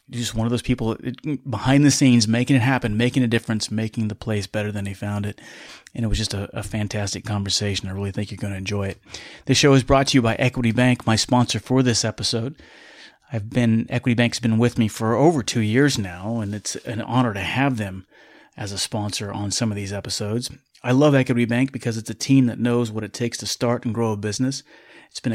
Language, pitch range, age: English, 105-125 Hz, 30-49